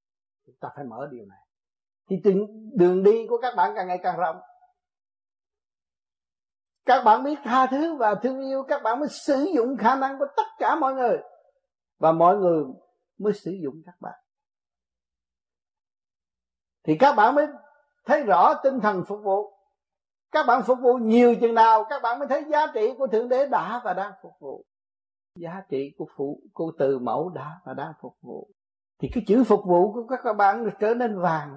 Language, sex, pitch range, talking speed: Vietnamese, male, 160-270 Hz, 185 wpm